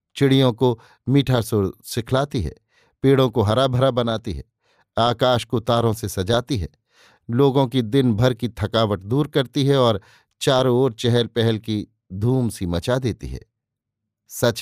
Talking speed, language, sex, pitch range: 160 wpm, Hindi, male, 110-135 Hz